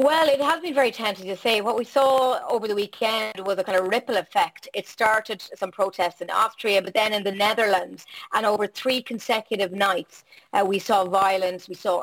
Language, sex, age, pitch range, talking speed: English, female, 30-49, 195-245 Hz, 210 wpm